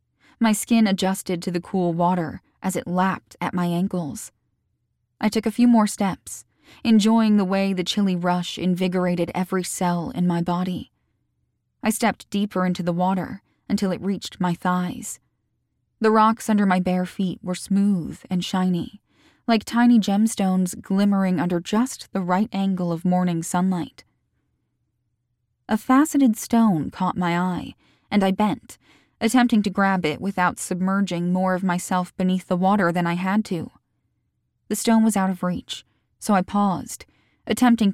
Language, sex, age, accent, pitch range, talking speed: English, female, 10-29, American, 180-205 Hz, 155 wpm